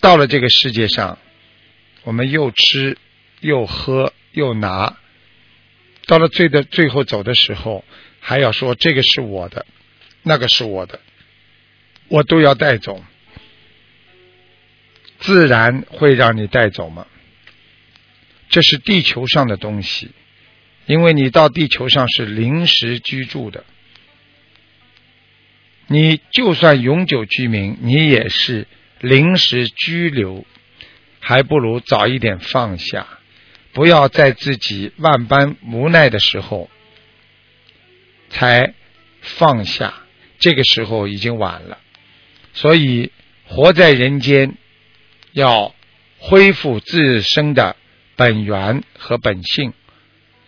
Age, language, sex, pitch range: 50-69, Chinese, male, 110-140 Hz